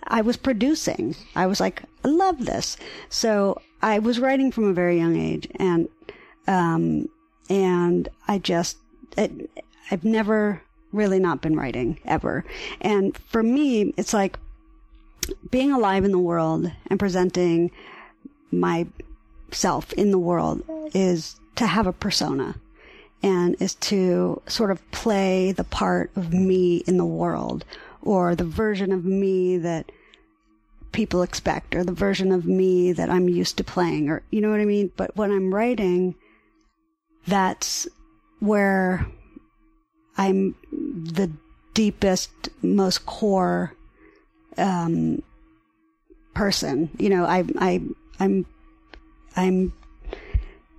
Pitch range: 170-215 Hz